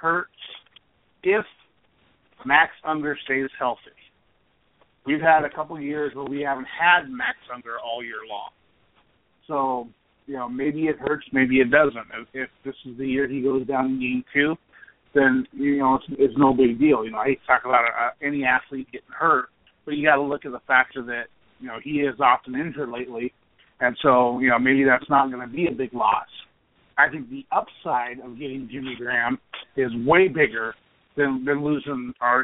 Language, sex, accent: English, male, American